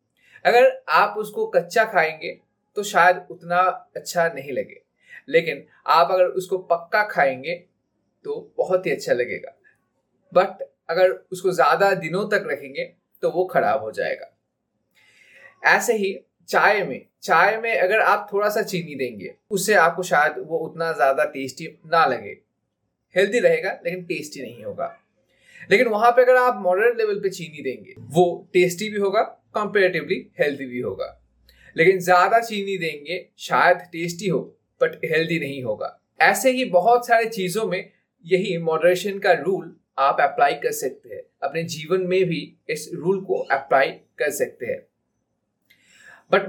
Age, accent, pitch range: 20-39, native, 175-255 Hz